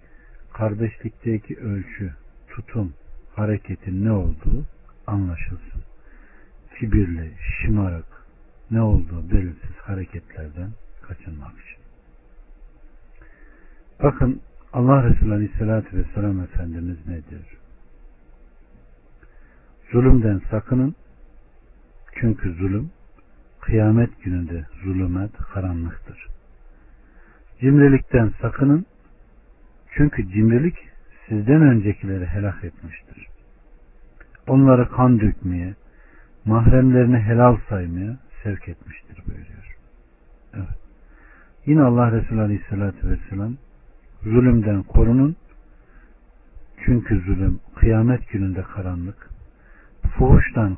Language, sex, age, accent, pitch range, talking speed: Turkish, male, 60-79, native, 85-115 Hz, 70 wpm